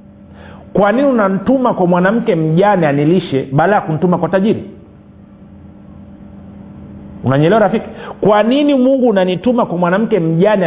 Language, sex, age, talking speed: Swahili, male, 50-69, 105 wpm